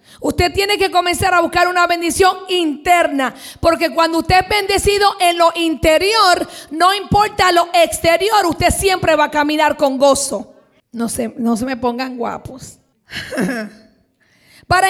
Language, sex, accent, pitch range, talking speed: Spanish, female, American, 295-380 Hz, 140 wpm